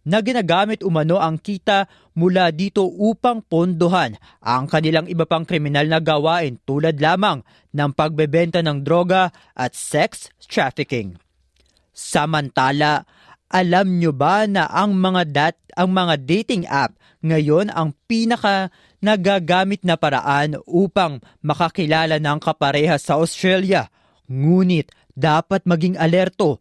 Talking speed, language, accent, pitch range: 120 wpm, Filipino, native, 150-180 Hz